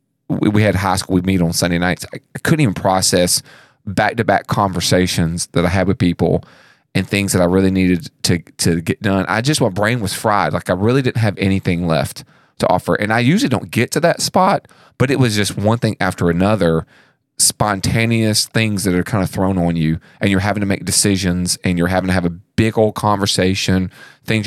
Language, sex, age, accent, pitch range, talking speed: English, male, 30-49, American, 90-105 Hz, 210 wpm